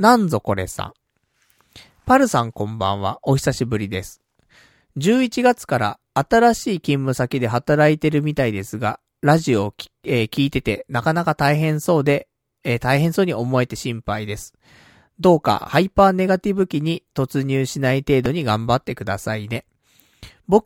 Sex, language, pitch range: male, Japanese, 115-170 Hz